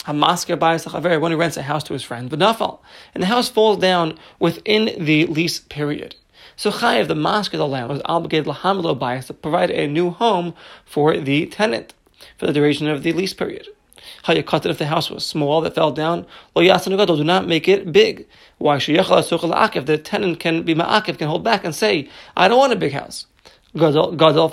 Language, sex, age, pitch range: English, male, 30-49, 150-190 Hz